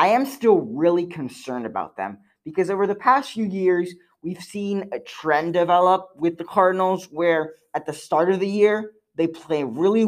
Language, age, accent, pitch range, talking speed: English, 20-39, American, 145-185 Hz, 185 wpm